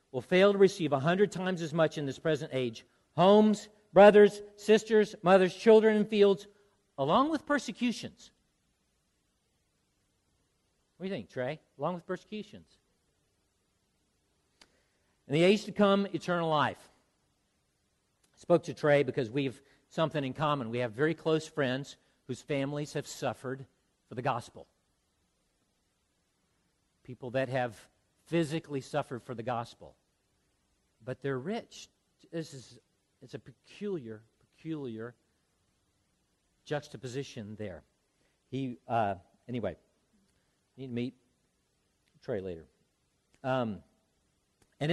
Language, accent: English, American